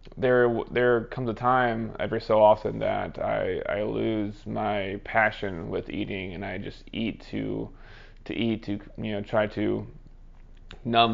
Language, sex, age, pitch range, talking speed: English, male, 20-39, 105-115 Hz, 155 wpm